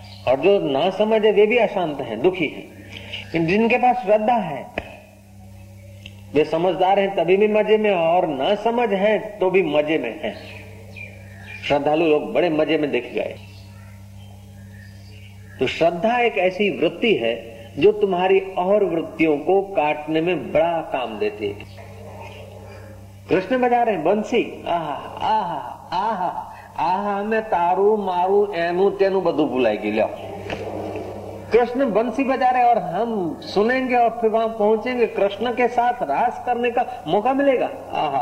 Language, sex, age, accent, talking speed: Hindi, male, 50-69, native, 145 wpm